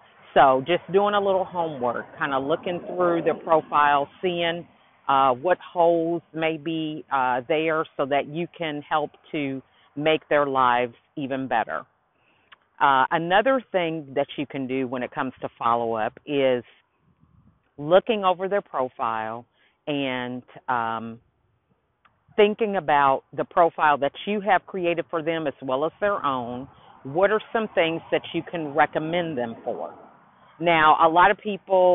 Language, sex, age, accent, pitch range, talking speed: English, female, 50-69, American, 135-180 Hz, 150 wpm